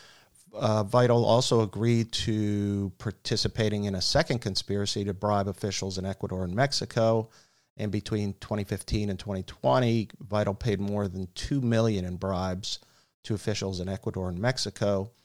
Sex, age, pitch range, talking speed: male, 50-69, 95-115 Hz, 140 wpm